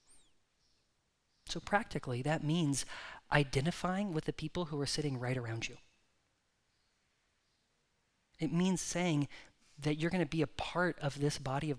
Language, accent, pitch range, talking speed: English, American, 135-170 Hz, 135 wpm